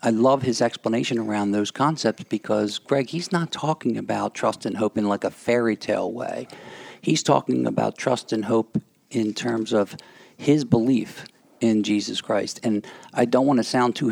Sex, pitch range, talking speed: male, 105-130 Hz, 185 wpm